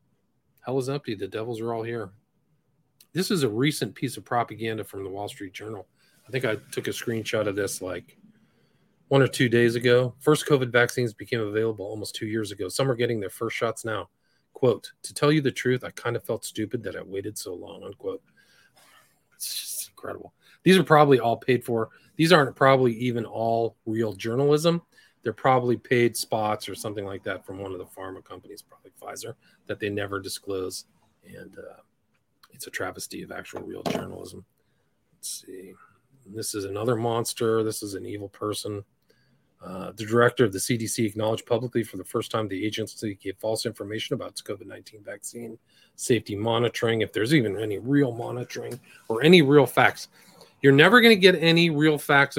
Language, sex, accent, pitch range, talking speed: English, male, American, 110-135 Hz, 185 wpm